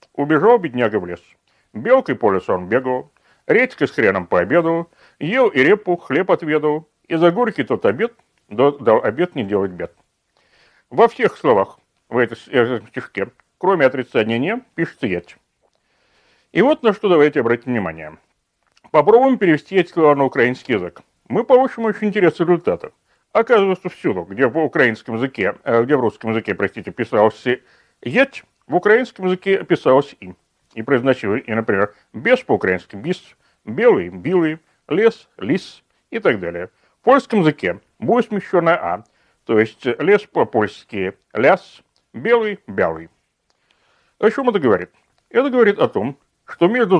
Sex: male